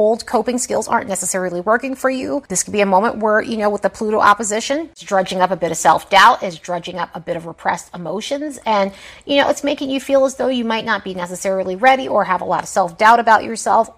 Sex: female